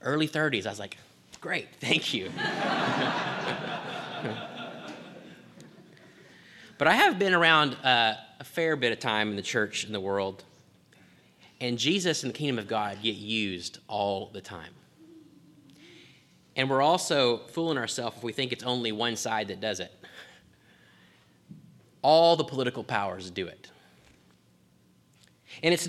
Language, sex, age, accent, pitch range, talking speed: English, male, 30-49, American, 95-155 Hz, 135 wpm